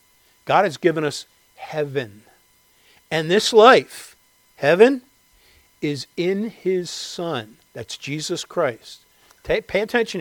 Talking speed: 105 wpm